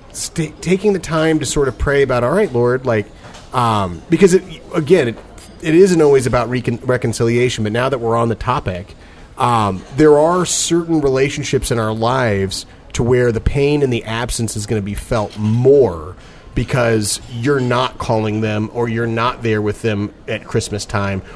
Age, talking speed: 30-49, 185 wpm